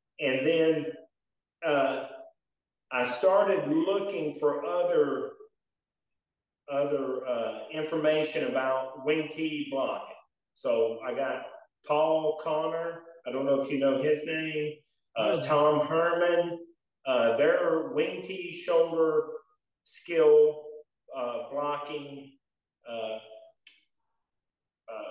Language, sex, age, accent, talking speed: English, male, 40-59, American, 100 wpm